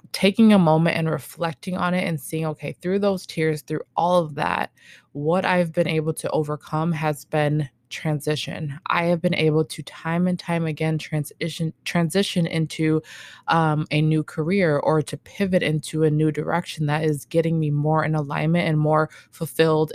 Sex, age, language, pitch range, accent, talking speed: female, 20-39, English, 150-175 Hz, American, 180 wpm